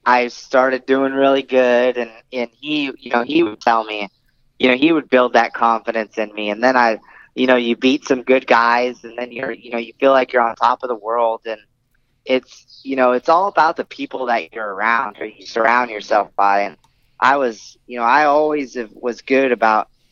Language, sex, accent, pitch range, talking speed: English, male, American, 120-140 Hz, 220 wpm